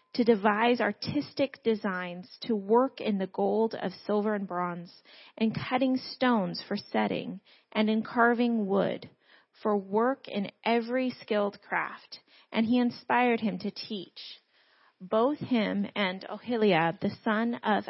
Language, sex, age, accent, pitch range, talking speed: English, female, 30-49, American, 195-235 Hz, 135 wpm